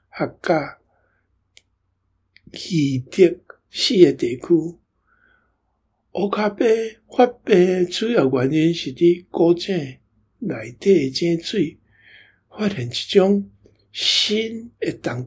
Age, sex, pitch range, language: 60-79, male, 135-205 Hz, Chinese